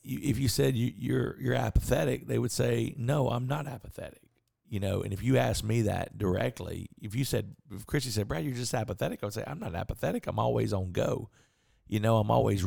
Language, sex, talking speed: English, male, 220 wpm